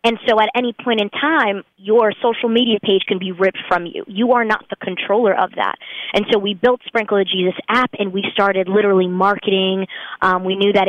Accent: American